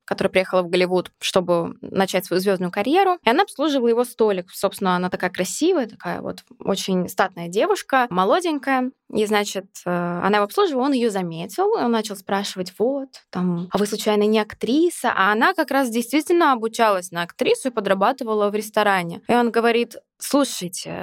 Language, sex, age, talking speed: Russian, female, 20-39, 165 wpm